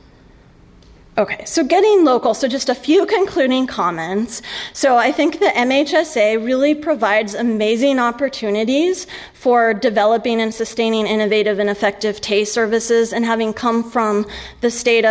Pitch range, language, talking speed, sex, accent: 200-240 Hz, English, 135 wpm, female, American